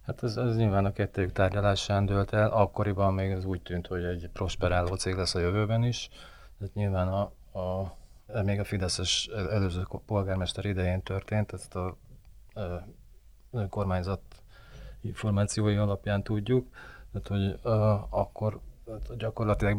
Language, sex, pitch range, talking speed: Hungarian, male, 95-105 Hz, 120 wpm